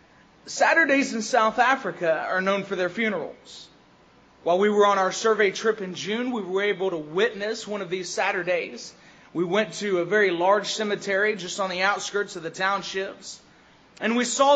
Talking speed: 180 wpm